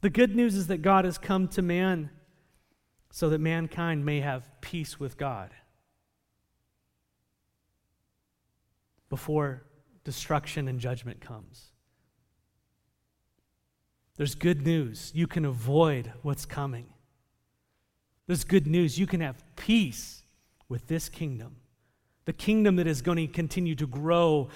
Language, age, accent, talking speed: English, 40-59, American, 120 wpm